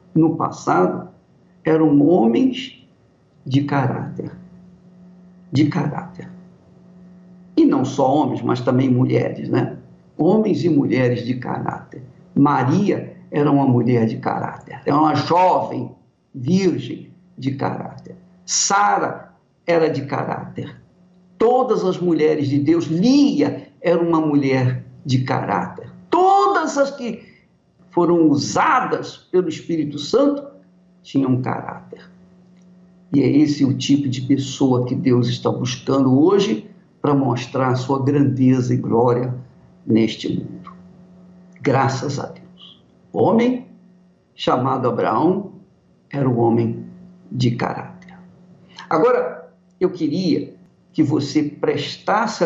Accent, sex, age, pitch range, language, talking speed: Brazilian, male, 50-69, 135-180 Hz, Portuguese, 115 wpm